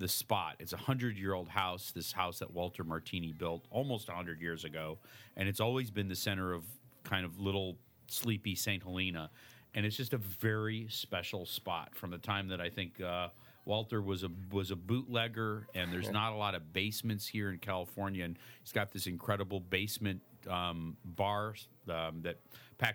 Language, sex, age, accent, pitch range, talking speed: English, male, 40-59, American, 90-110 Hz, 190 wpm